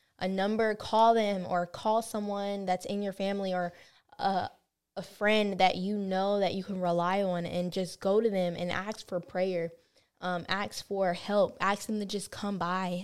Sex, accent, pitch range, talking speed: female, American, 180-210 Hz, 195 wpm